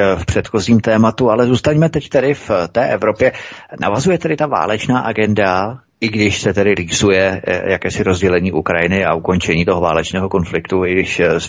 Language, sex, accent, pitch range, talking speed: Czech, male, native, 95-110 Hz, 160 wpm